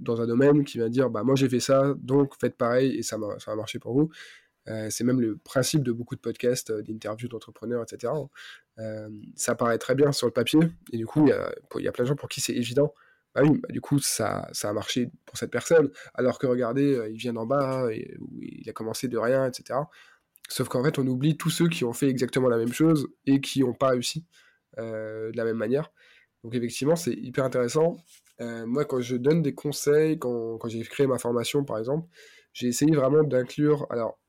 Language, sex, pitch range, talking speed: French, male, 115-140 Hz, 235 wpm